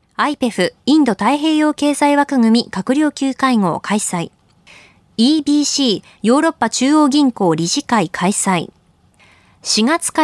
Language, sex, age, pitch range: Japanese, female, 20-39, 205-290 Hz